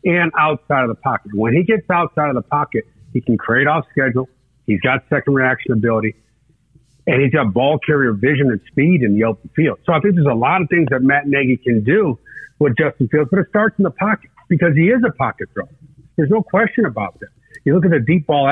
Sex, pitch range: male, 120-155 Hz